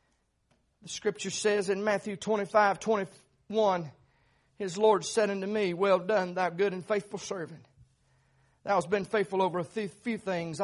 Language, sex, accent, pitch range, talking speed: English, male, American, 155-215 Hz, 150 wpm